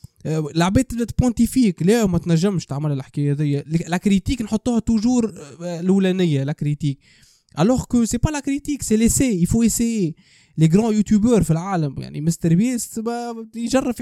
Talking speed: 150 wpm